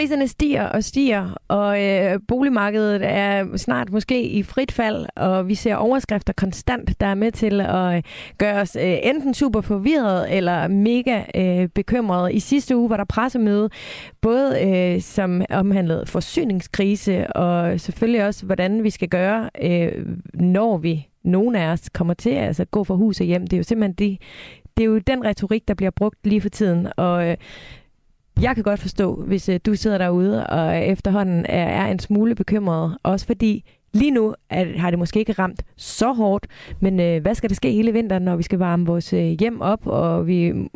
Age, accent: 30-49, native